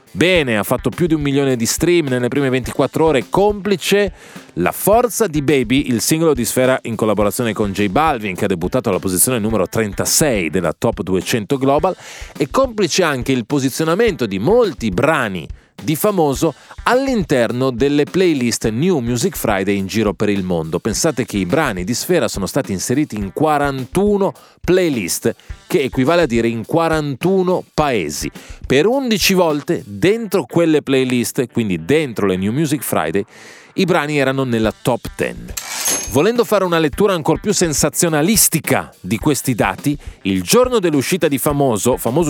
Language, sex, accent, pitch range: Italian, male, native, 120-170 Hz